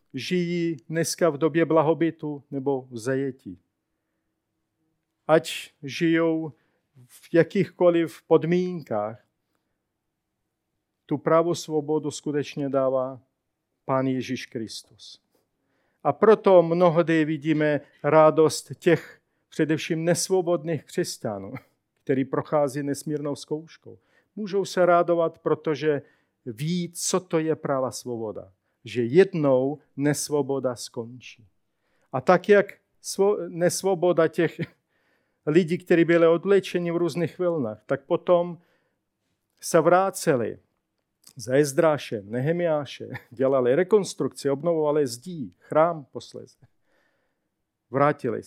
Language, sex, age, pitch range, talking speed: Czech, male, 50-69, 135-170 Hz, 90 wpm